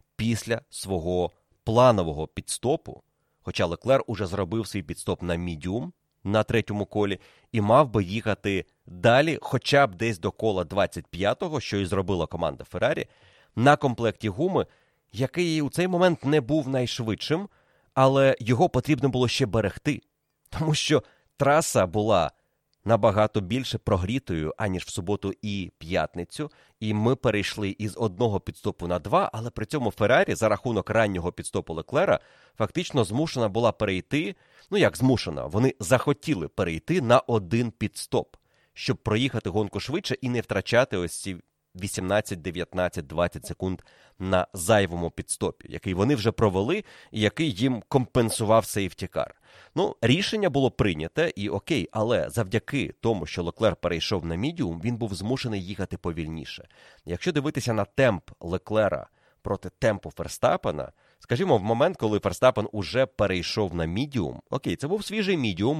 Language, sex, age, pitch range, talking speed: Ukrainian, male, 30-49, 95-130 Hz, 140 wpm